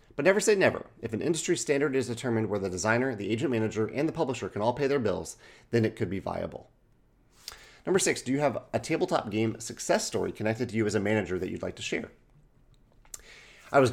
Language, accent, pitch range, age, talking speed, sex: English, American, 100-135 Hz, 30-49, 225 wpm, male